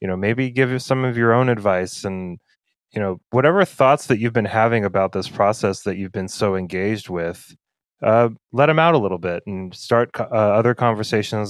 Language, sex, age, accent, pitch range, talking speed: English, male, 20-39, American, 95-120 Hz, 210 wpm